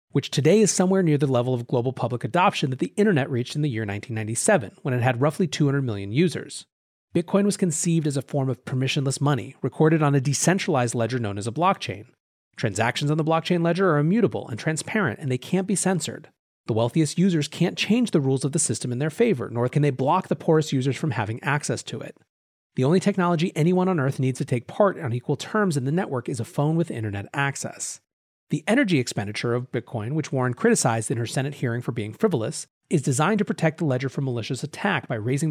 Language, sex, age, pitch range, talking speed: English, male, 30-49, 125-175 Hz, 220 wpm